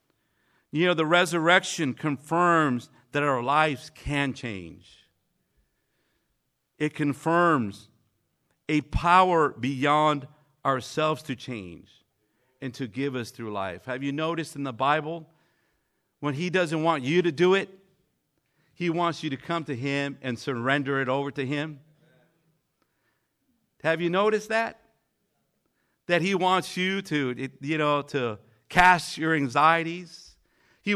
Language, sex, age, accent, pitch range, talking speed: English, male, 50-69, American, 140-200 Hz, 130 wpm